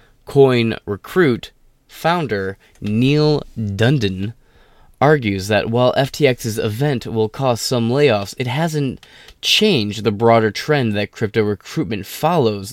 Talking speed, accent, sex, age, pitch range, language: 115 wpm, American, male, 20-39, 100-130 Hz, English